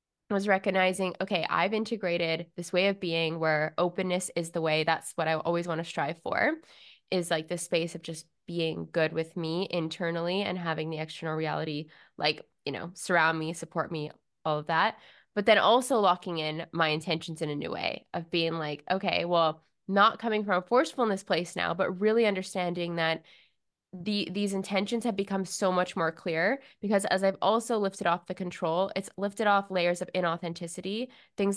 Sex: female